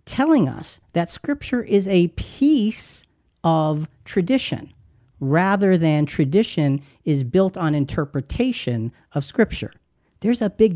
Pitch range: 145-195 Hz